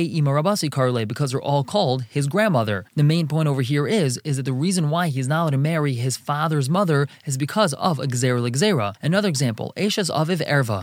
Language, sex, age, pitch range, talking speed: English, male, 20-39, 130-165 Hz, 195 wpm